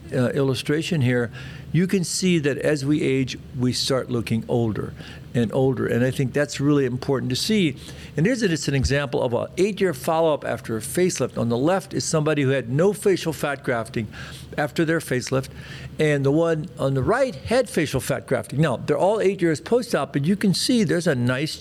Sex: male